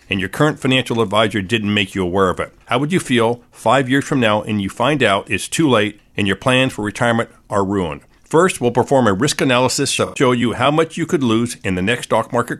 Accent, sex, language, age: American, male, English, 50-69